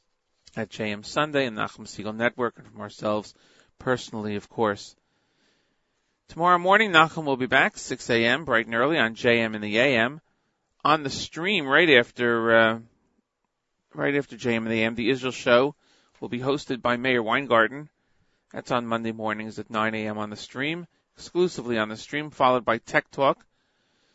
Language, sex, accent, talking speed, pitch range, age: English, male, American, 170 wpm, 110-130 Hz, 40-59